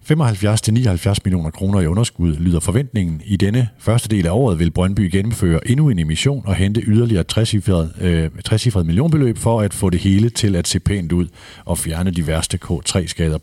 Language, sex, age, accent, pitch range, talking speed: Danish, male, 50-69, native, 85-110 Hz, 175 wpm